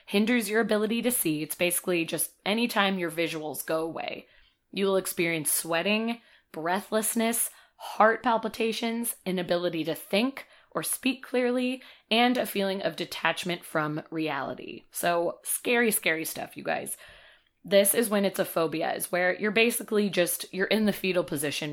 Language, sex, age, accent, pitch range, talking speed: English, female, 20-39, American, 160-215 Hz, 150 wpm